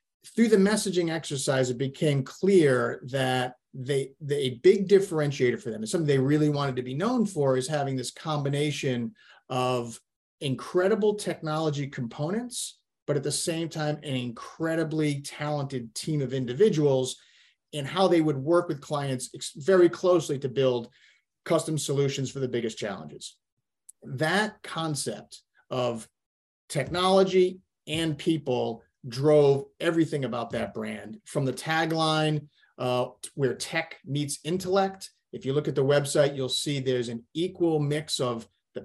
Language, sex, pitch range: English, male, 130-165 Hz